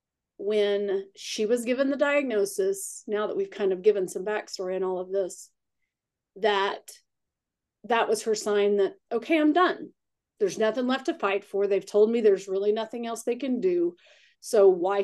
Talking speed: 180 wpm